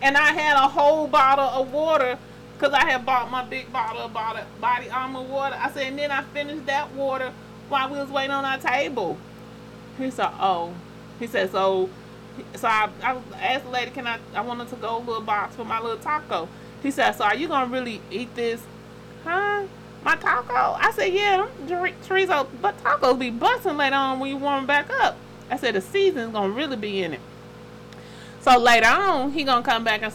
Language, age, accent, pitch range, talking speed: English, 30-49, American, 220-280 Hz, 215 wpm